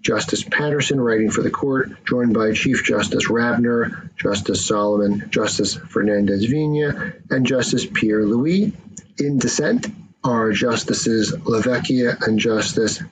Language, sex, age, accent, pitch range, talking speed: English, male, 50-69, American, 110-140 Hz, 120 wpm